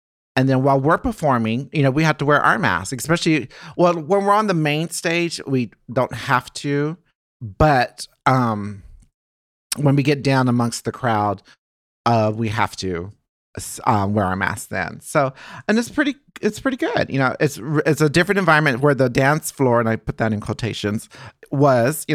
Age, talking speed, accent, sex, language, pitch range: 40-59, 185 wpm, American, male, English, 115-160 Hz